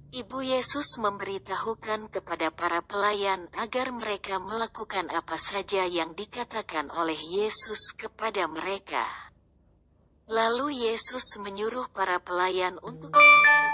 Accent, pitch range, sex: native, 185-230 Hz, female